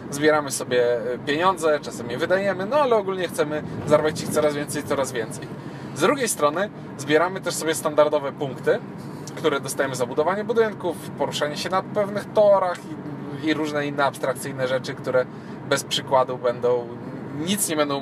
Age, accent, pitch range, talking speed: 20-39, native, 145-200 Hz, 155 wpm